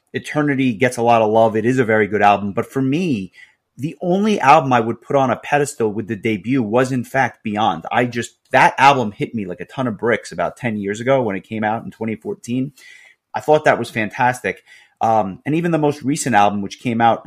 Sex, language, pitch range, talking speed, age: male, English, 110-140 Hz, 235 wpm, 30-49